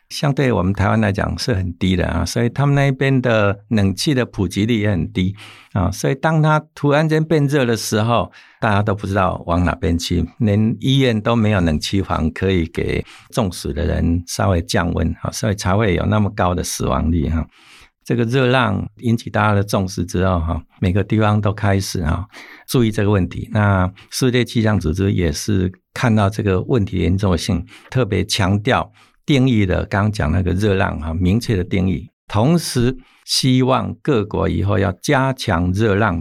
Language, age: Chinese, 60-79